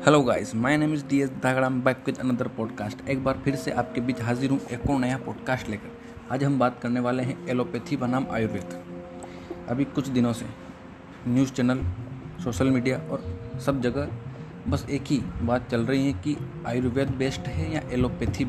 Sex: male